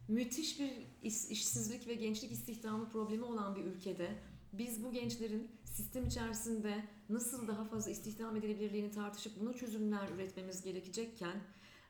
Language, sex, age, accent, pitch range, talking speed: Turkish, female, 30-49, native, 175-230 Hz, 125 wpm